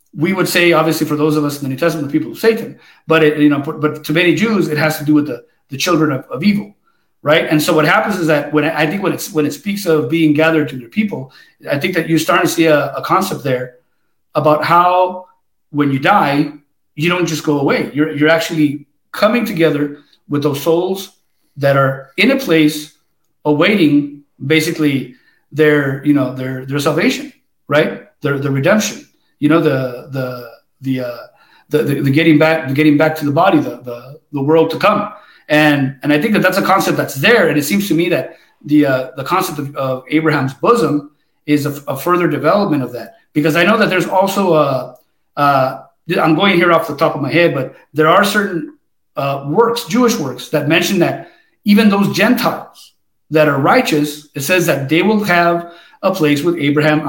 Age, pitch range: 40-59, 145-175 Hz